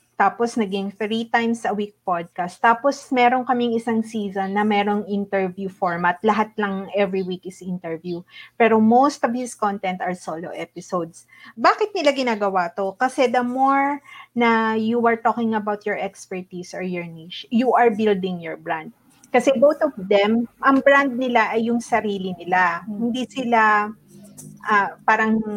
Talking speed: 155 wpm